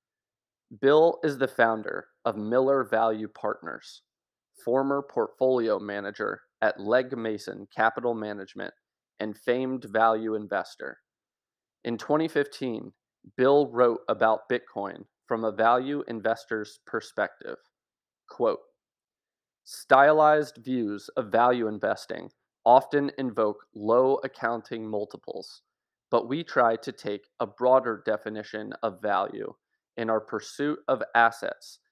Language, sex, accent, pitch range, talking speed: English, male, American, 110-135 Hz, 105 wpm